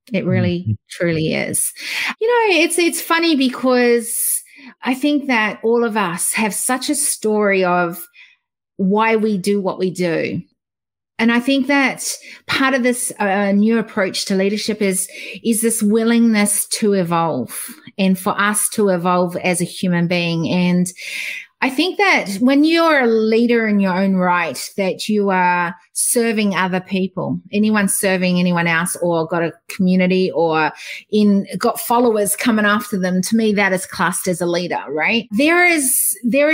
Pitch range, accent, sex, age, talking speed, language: 185-240 Hz, Australian, female, 30-49, 165 wpm, English